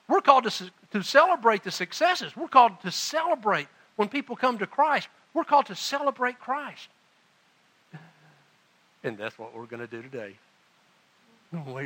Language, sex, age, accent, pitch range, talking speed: English, male, 60-79, American, 155-235 Hz, 150 wpm